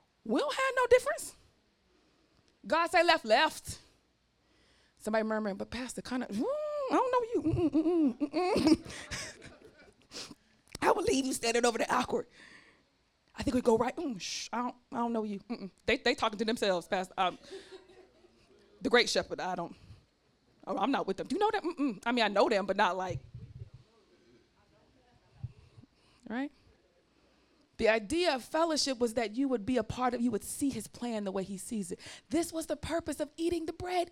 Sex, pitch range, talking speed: female, 220-360 Hz, 180 wpm